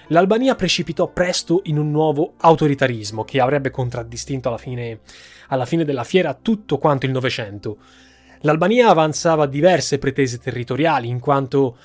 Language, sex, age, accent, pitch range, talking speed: Italian, male, 20-39, native, 125-165 Hz, 130 wpm